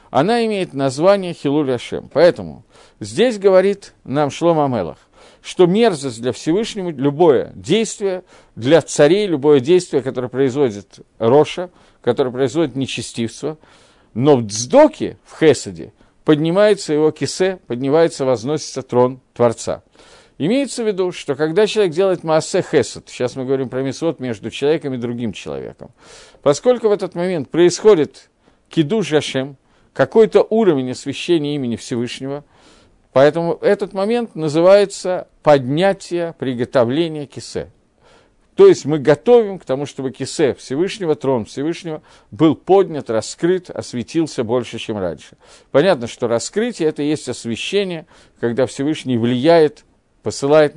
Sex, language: male, Russian